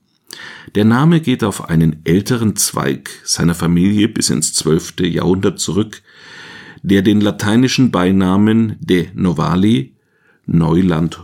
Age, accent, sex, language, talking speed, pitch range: 50-69, German, male, German, 110 wpm, 90-115 Hz